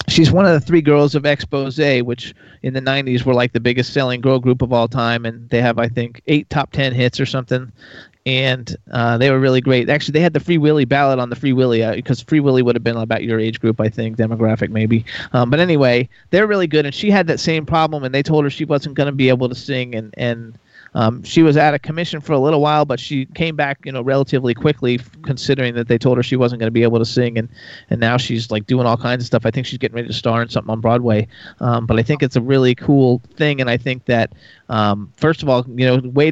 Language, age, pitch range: English, 30-49, 120-145 Hz